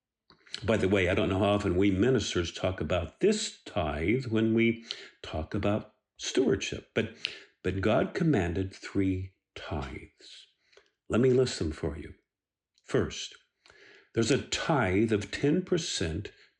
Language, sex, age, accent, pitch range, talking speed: English, male, 50-69, American, 95-135 Hz, 135 wpm